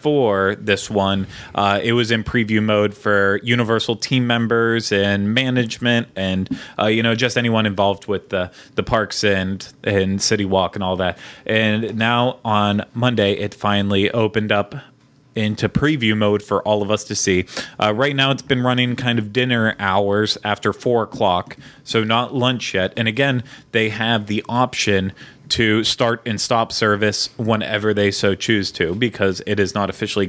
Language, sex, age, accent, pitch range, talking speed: English, male, 20-39, American, 100-120 Hz, 175 wpm